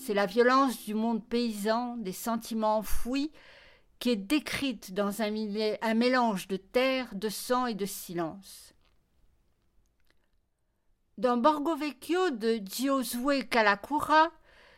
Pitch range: 215-265 Hz